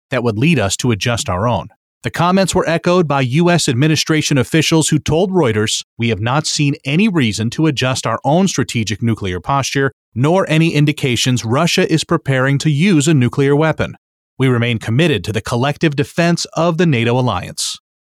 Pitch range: 120-160 Hz